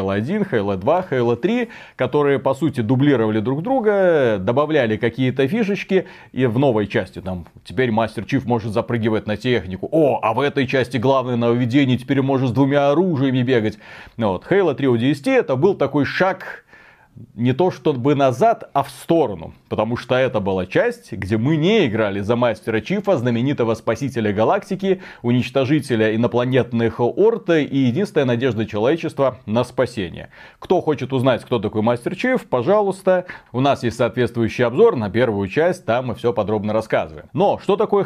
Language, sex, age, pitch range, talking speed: Russian, male, 30-49, 115-160 Hz, 155 wpm